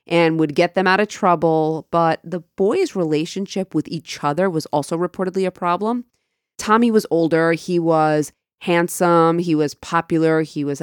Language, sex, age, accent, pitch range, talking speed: English, female, 30-49, American, 150-185 Hz, 165 wpm